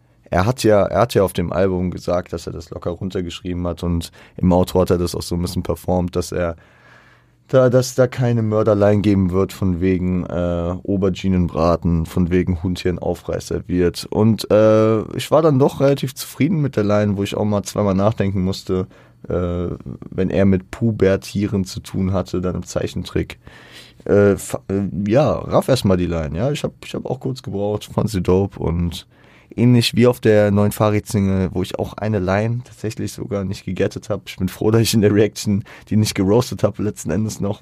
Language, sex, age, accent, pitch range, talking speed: German, male, 30-49, German, 90-110 Hz, 200 wpm